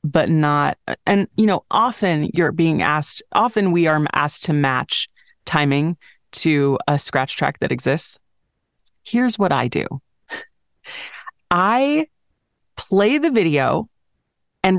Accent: American